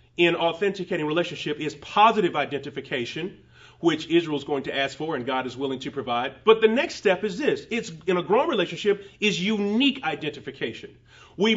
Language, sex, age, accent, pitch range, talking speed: English, male, 30-49, American, 145-210 Hz, 175 wpm